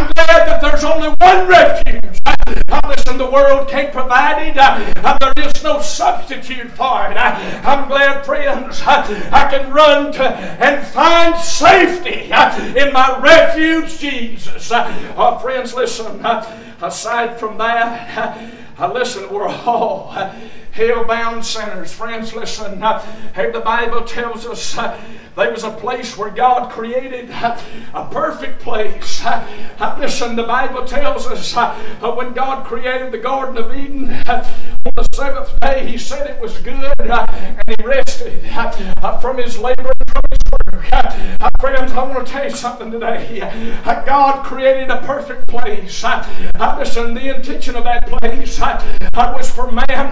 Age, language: 60-79, English